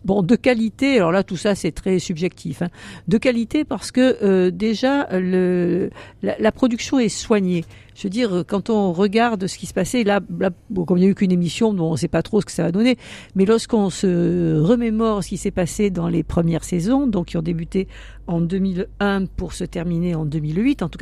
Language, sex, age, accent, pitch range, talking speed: French, female, 60-79, French, 170-225 Hz, 225 wpm